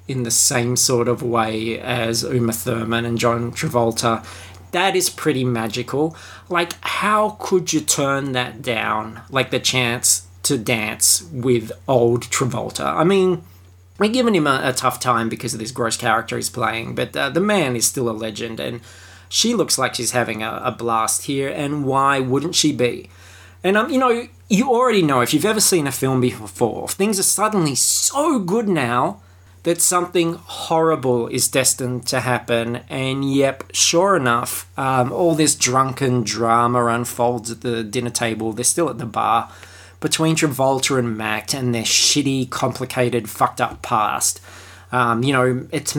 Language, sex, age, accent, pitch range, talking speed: English, male, 20-39, Australian, 115-145 Hz, 170 wpm